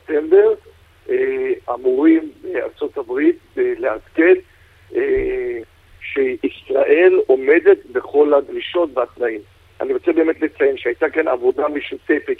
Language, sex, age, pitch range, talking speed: Hebrew, male, 50-69, 315-410 Hz, 80 wpm